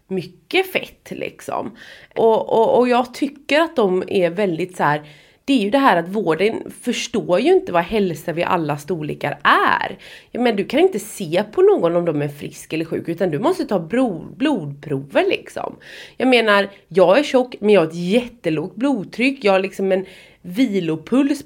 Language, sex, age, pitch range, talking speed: English, female, 30-49, 180-245 Hz, 185 wpm